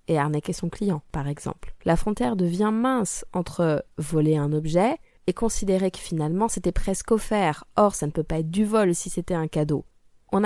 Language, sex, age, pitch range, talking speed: French, female, 20-39, 180-225 Hz, 195 wpm